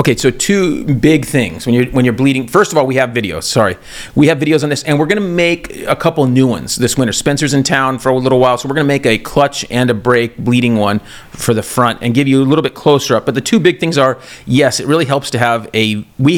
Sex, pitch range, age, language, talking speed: male, 120-150 Hz, 30-49, English, 270 wpm